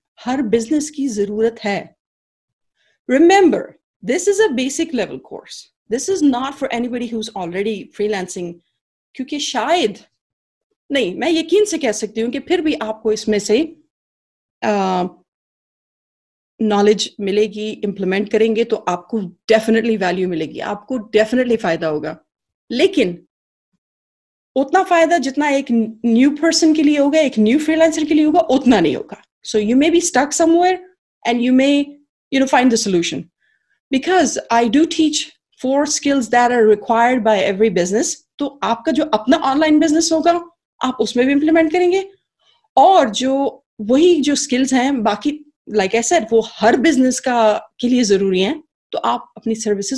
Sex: female